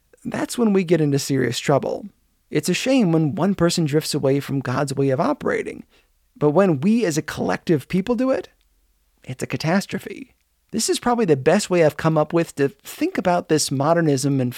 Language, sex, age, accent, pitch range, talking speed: English, male, 30-49, American, 145-200 Hz, 200 wpm